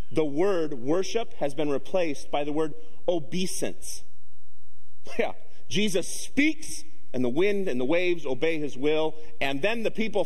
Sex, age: male, 40-59